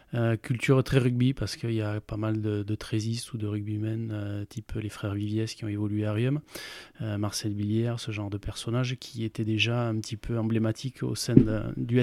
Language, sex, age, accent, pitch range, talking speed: French, male, 20-39, French, 110-125 Hz, 220 wpm